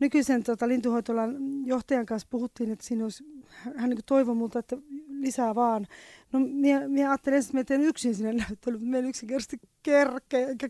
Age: 20-39